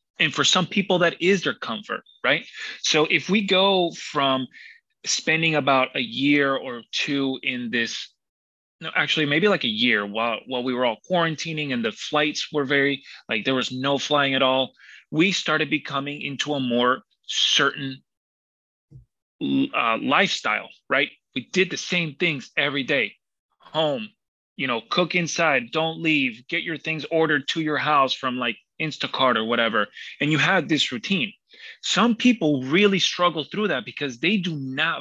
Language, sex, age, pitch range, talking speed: English, male, 30-49, 135-175 Hz, 165 wpm